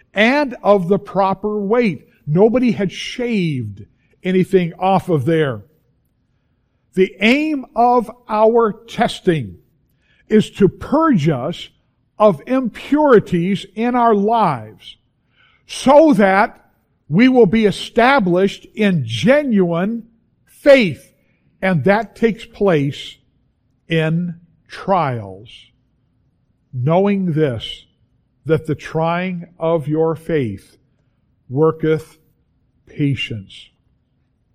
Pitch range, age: 140-210 Hz, 50-69